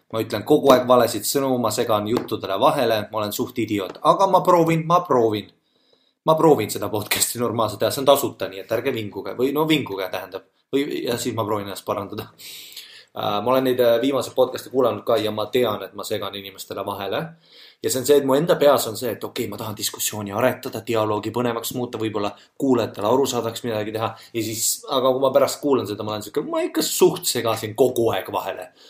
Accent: Finnish